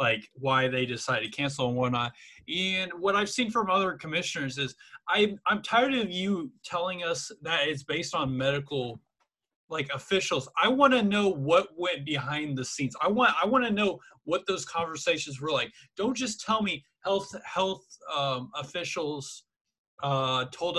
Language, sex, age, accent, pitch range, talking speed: English, male, 20-39, American, 140-190 Hz, 170 wpm